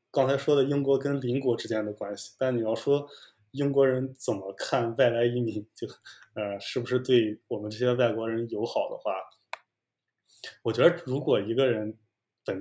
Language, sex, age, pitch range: Chinese, male, 20-39, 105-125 Hz